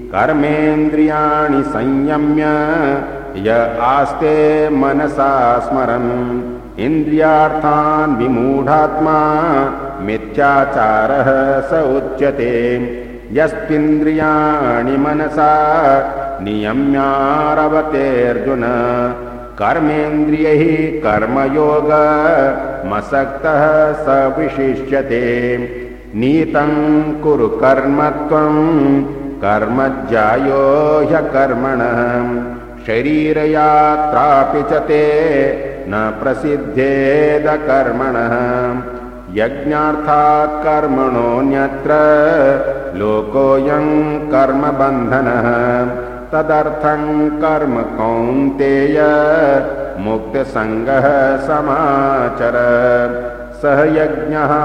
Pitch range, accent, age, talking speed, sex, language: 125-150 Hz, native, 50-69, 40 wpm, male, Hindi